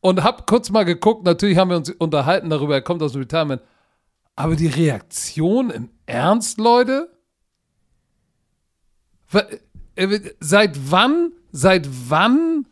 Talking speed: 125 wpm